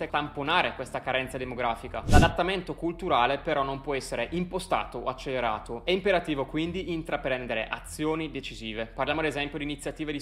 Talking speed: 145 wpm